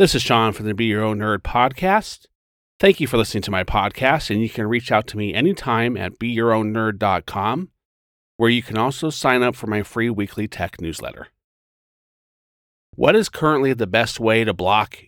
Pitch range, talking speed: 95-120 Hz, 185 wpm